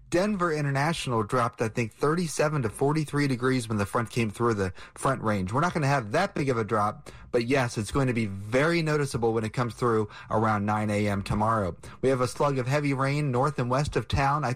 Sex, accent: male, American